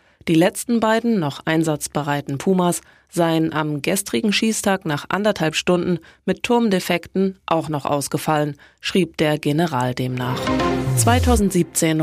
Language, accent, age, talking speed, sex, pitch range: German, German, 20-39, 115 wpm, female, 155-190 Hz